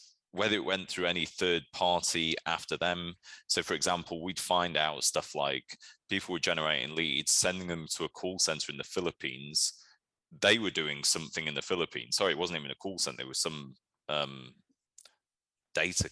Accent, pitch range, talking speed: British, 75-100 Hz, 180 wpm